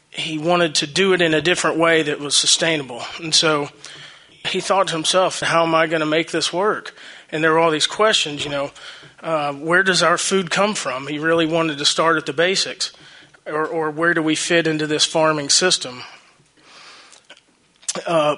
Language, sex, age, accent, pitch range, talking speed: English, male, 30-49, American, 145-165 Hz, 195 wpm